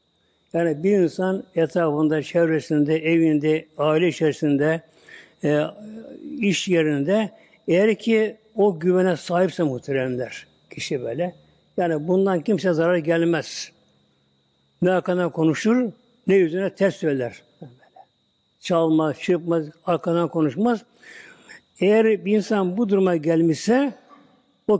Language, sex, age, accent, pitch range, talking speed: Turkish, male, 60-79, native, 155-195 Hz, 105 wpm